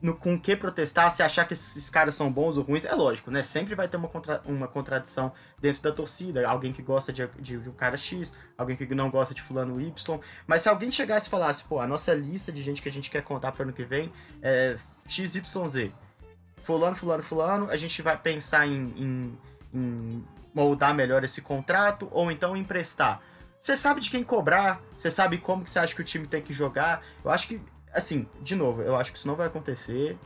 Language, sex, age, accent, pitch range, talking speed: Portuguese, male, 20-39, Brazilian, 130-170 Hz, 220 wpm